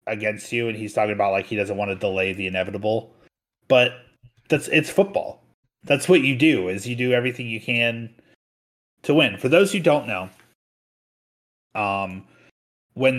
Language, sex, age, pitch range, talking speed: English, male, 30-49, 105-140 Hz, 170 wpm